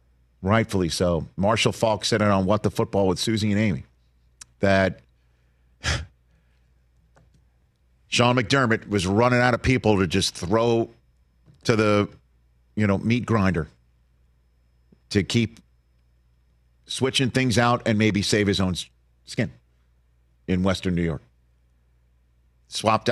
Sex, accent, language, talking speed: male, American, English, 120 wpm